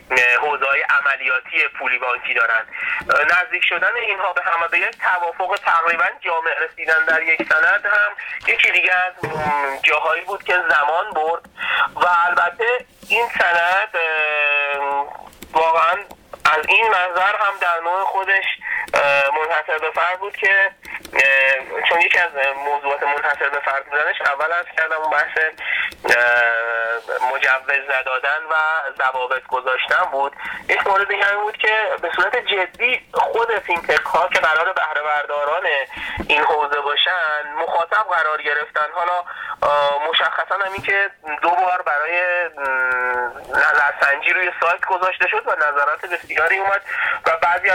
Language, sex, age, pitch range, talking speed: Persian, male, 30-49, 150-195 Hz, 125 wpm